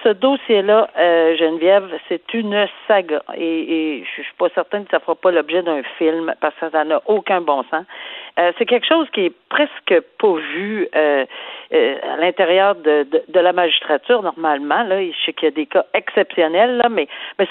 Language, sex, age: French, female, 50-69